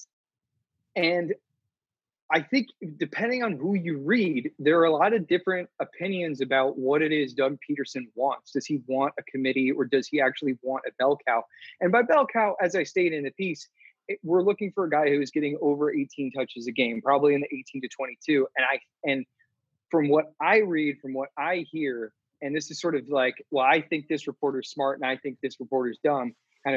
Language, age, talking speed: English, 20-39, 215 wpm